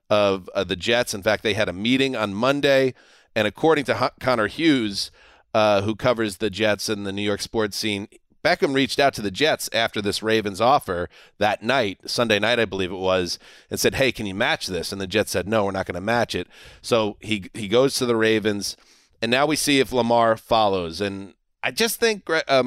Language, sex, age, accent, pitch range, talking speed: English, male, 30-49, American, 110-145 Hz, 220 wpm